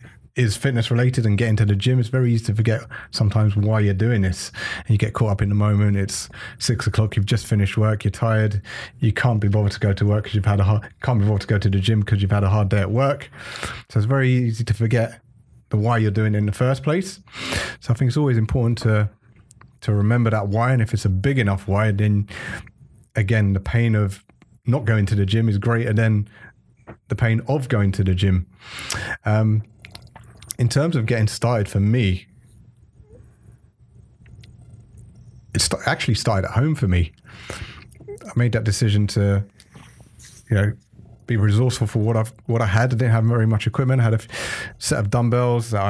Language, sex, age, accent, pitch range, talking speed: English, male, 30-49, British, 105-120 Hz, 210 wpm